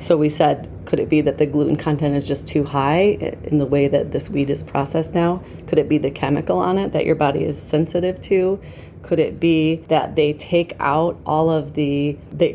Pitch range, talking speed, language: 145-160 Hz, 225 wpm, English